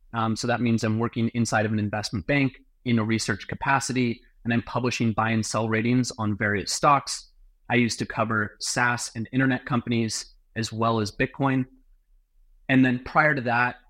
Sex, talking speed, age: male, 180 wpm, 30-49